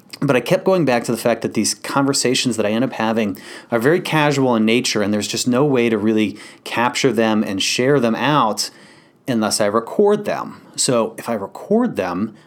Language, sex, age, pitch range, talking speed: English, male, 30-49, 110-135 Hz, 205 wpm